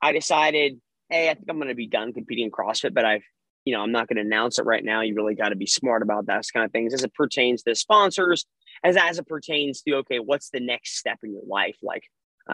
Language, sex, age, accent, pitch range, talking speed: English, male, 20-39, American, 115-155 Hz, 270 wpm